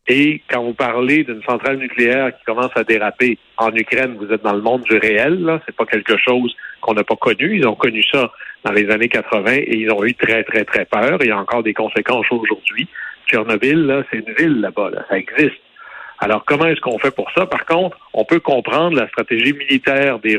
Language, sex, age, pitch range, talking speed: French, male, 60-79, 110-140 Hz, 225 wpm